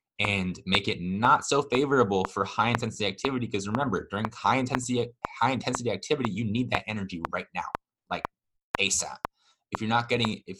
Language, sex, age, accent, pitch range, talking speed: English, male, 20-39, American, 95-125 Hz, 175 wpm